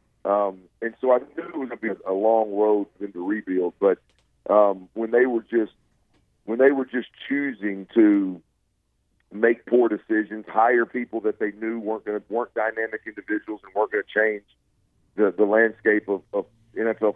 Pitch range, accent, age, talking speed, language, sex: 100-115 Hz, American, 50-69, 180 wpm, English, male